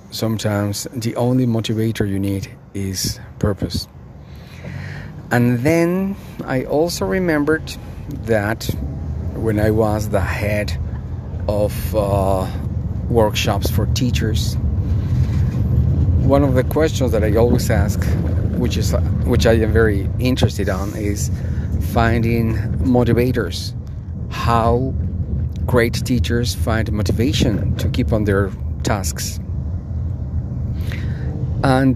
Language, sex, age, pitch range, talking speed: English, male, 40-59, 100-115 Hz, 100 wpm